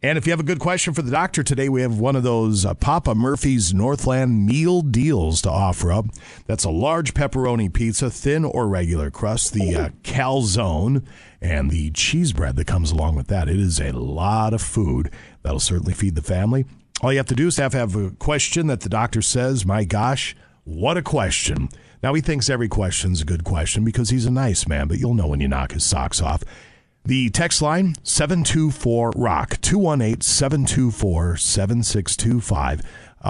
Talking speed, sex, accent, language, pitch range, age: 190 wpm, male, American, English, 90-130 Hz, 50-69